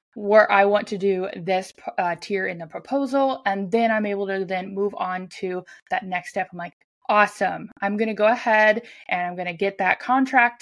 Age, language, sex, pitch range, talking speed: 20-39, English, female, 185-225 Hz, 205 wpm